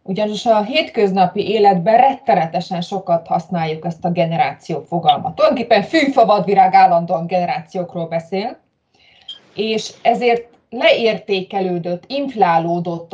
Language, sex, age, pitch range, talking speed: Hungarian, female, 20-39, 185-235 Hz, 90 wpm